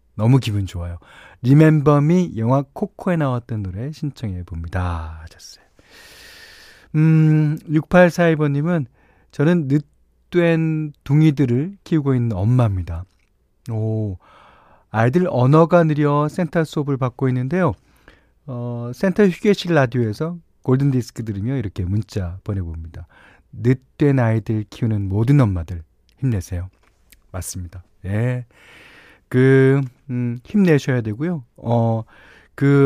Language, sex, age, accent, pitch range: Korean, male, 40-59, native, 105-155 Hz